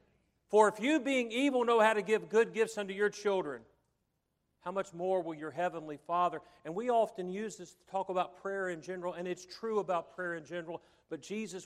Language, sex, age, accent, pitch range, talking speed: English, male, 40-59, American, 170-230 Hz, 210 wpm